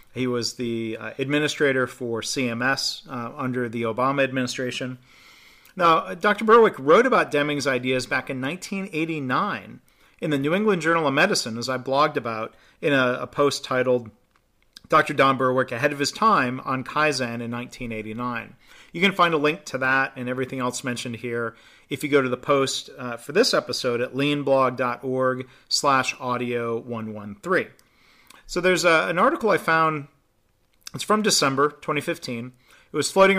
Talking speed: 160 wpm